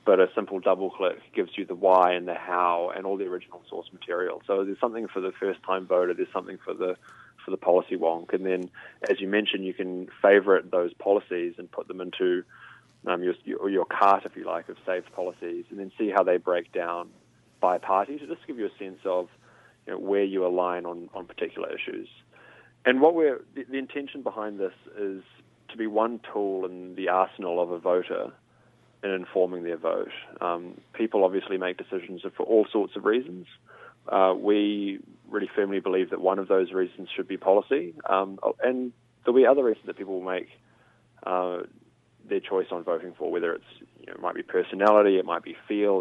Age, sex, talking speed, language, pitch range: 20-39, male, 195 wpm, English, 90-120 Hz